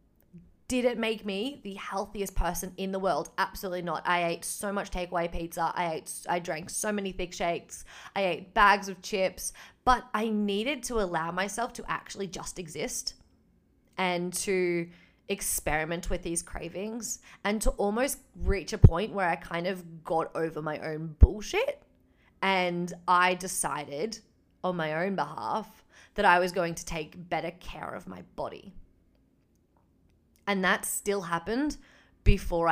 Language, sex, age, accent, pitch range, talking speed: English, female, 20-39, Australian, 170-200 Hz, 155 wpm